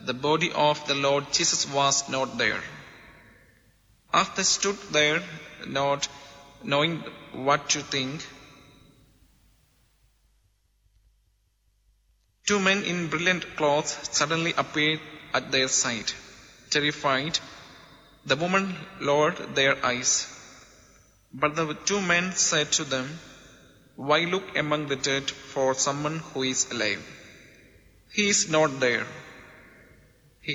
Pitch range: 130-155 Hz